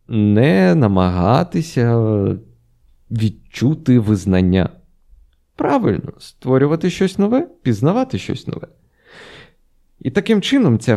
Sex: male